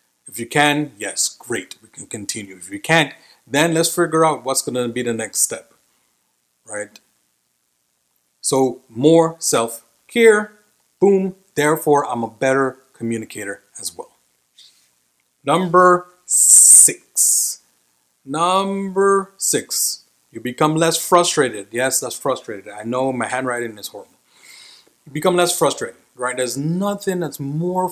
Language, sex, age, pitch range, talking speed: English, male, 30-49, 110-155 Hz, 130 wpm